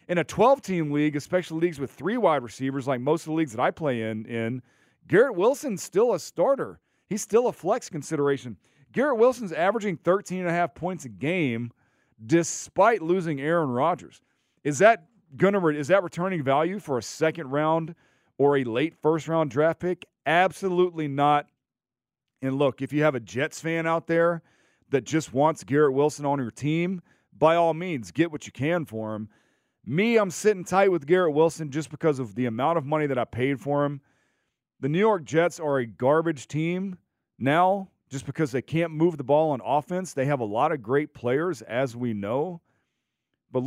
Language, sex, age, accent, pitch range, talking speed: English, male, 40-59, American, 130-170 Hz, 190 wpm